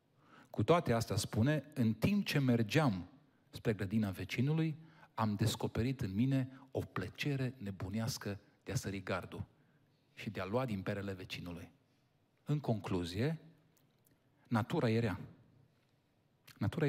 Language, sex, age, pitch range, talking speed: Romanian, male, 40-59, 110-140 Hz, 120 wpm